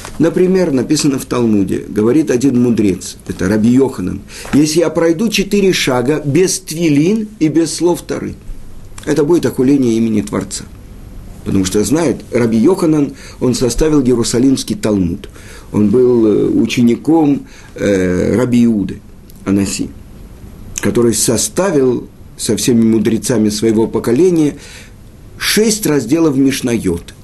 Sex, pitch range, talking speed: male, 105-150 Hz, 115 wpm